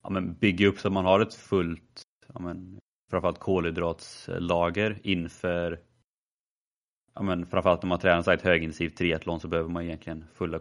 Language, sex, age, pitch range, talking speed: Swedish, male, 30-49, 90-115 Hz, 160 wpm